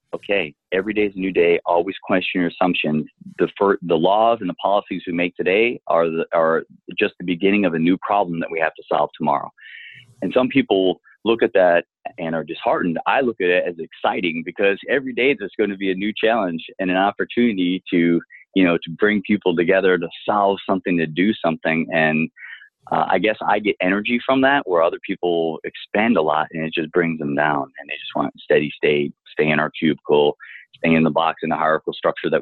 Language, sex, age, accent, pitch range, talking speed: English, male, 30-49, American, 80-100 Hz, 220 wpm